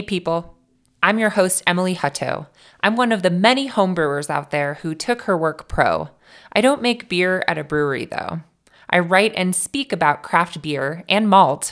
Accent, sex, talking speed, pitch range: American, female, 185 wpm, 150-190 Hz